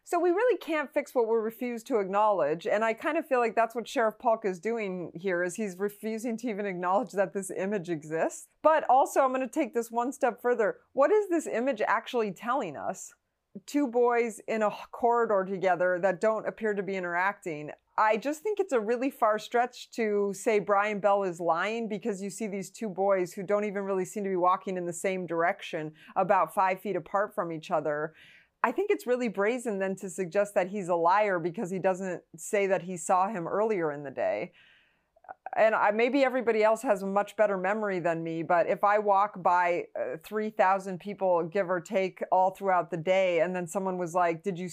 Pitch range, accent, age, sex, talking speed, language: 180-230 Hz, American, 30-49, female, 210 wpm, English